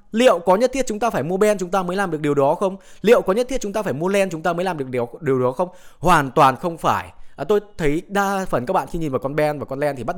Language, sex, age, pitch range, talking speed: Vietnamese, male, 20-39, 130-190 Hz, 330 wpm